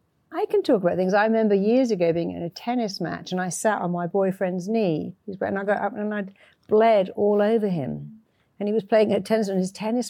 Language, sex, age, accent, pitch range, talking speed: English, female, 60-79, British, 180-220 Hz, 240 wpm